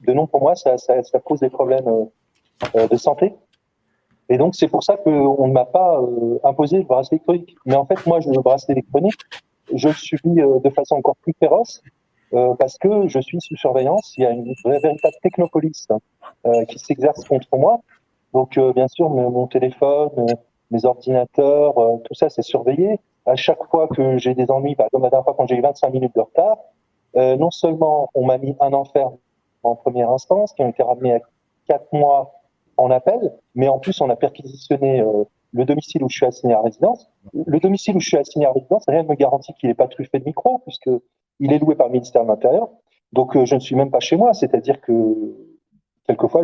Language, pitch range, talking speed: French, 125-160 Hz, 220 wpm